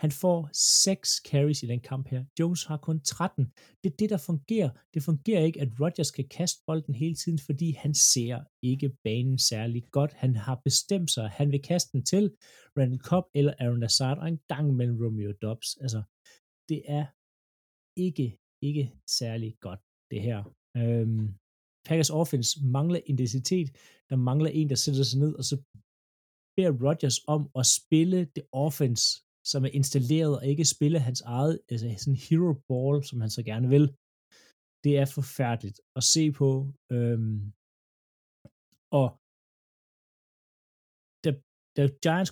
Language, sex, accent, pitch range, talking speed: Danish, male, native, 125-155 Hz, 160 wpm